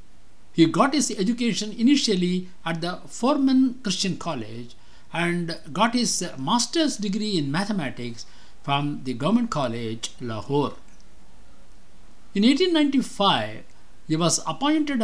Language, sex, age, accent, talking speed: English, male, 60-79, Indian, 110 wpm